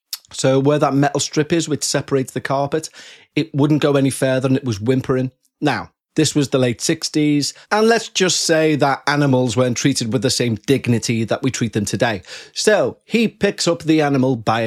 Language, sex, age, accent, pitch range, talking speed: English, male, 30-49, British, 130-160 Hz, 200 wpm